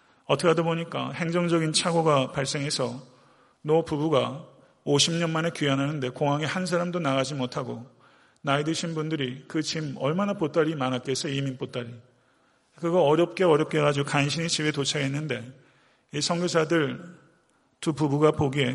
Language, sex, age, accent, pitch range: Korean, male, 40-59, native, 135-160 Hz